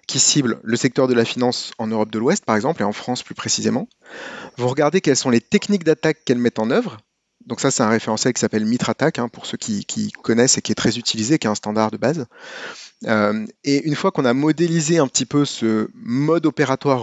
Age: 30-49